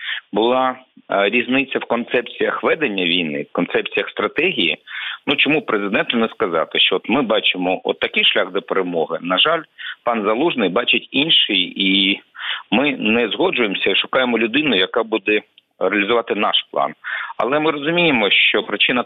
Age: 50-69